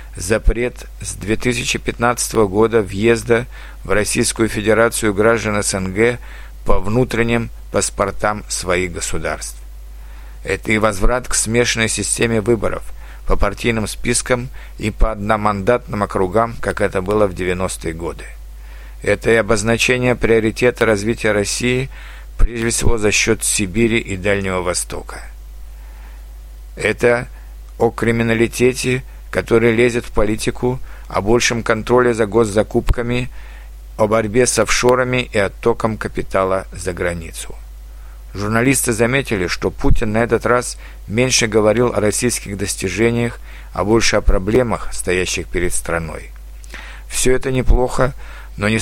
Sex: male